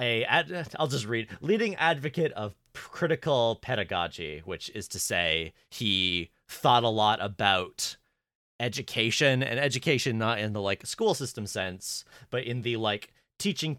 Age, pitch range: 30-49, 95-125 Hz